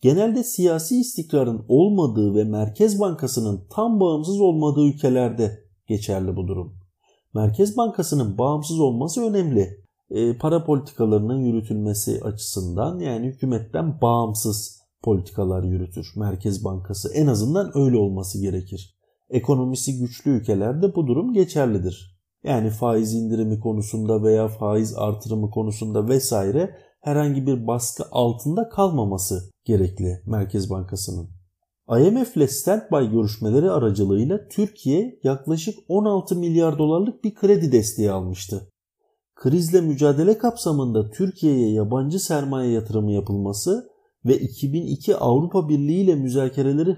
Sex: male